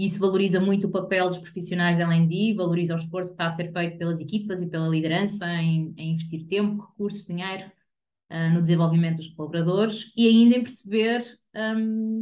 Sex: female